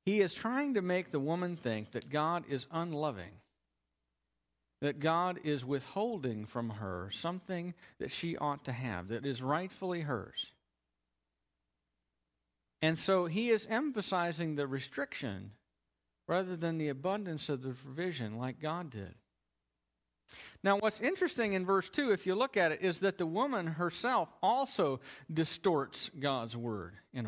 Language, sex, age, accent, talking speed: English, male, 50-69, American, 145 wpm